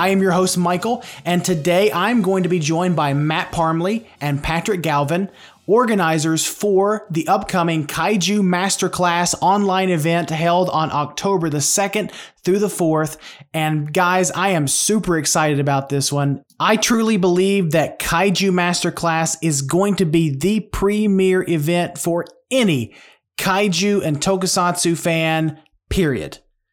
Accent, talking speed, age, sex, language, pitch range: American, 140 wpm, 20-39, male, English, 155-195 Hz